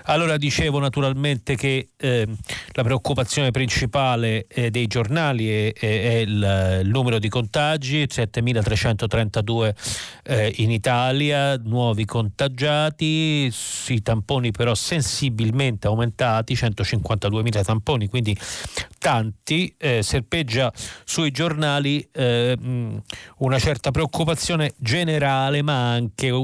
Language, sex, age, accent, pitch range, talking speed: Italian, male, 40-59, native, 105-130 Hz, 100 wpm